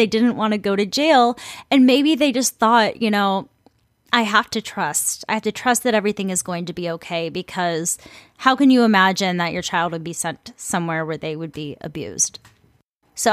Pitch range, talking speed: 185-235 Hz, 215 wpm